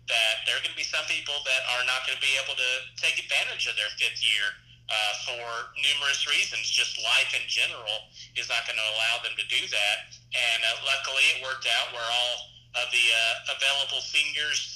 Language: English